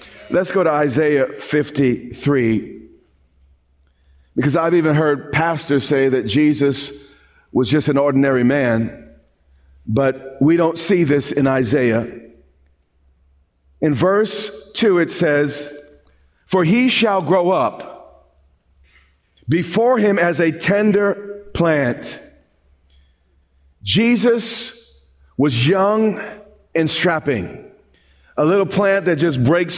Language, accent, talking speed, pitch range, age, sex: English, American, 105 wpm, 130-195 Hz, 40-59, male